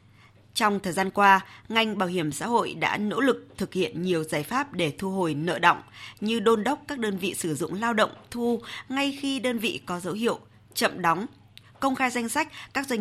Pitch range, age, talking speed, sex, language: 165-225 Hz, 20-39, 220 wpm, female, Vietnamese